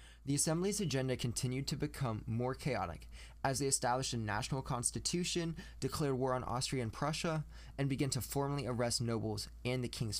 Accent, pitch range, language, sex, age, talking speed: American, 105-135 Hz, English, male, 20-39, 170 wpm